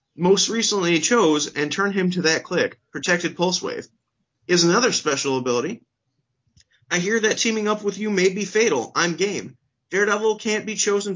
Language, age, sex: English, 30-49, male